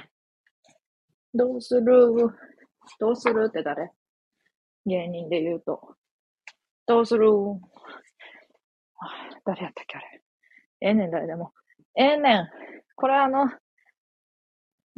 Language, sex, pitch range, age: Japanese, female, 190-285 Hz, 20-39